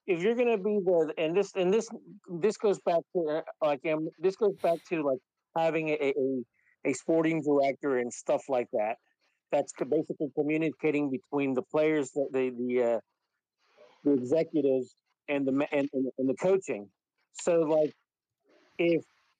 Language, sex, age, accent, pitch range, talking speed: English, male, 50-69, American, 130-165 Hz, 150 wpm